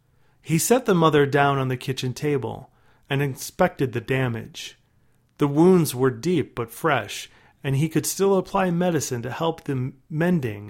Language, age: English, 30-49